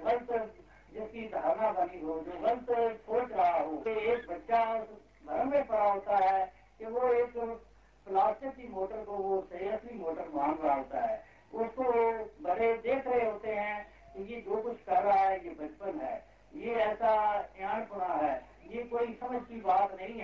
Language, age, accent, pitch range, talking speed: Hindi, 60-79, native, 190-235 Hz, 155 wpm